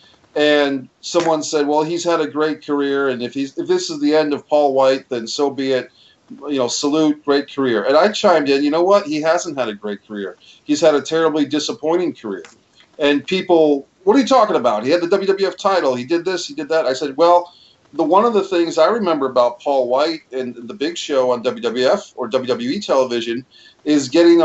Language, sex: English, male